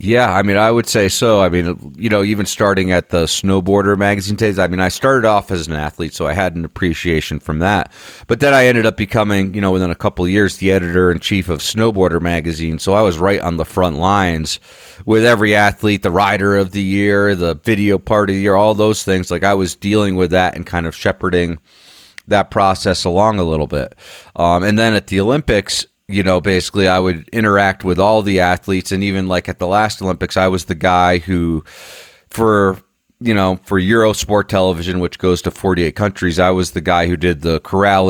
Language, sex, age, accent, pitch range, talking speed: English, male, 30-49, American, 90-105 Hz, 215 wpm